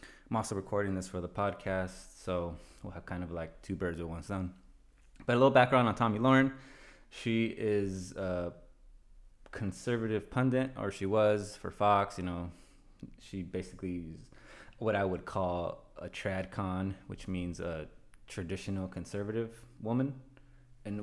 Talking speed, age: 150 wpm, 20-39